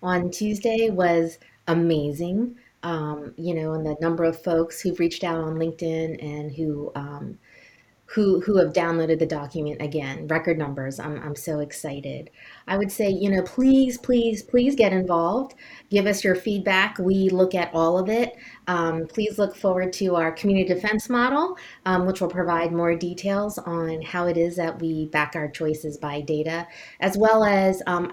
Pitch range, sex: 160-195 Hz, female